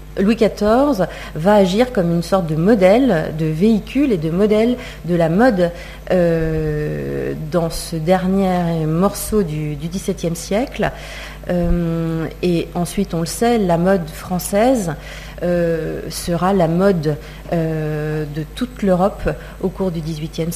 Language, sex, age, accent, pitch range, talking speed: French, female, 40-59, French, 160-200 Hz, 135 wpm